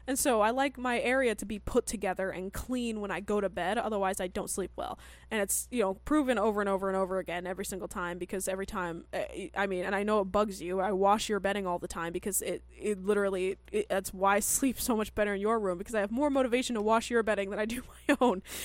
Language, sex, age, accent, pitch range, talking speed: English, female, 20-39, American, 195-240 Hz, 265 wpm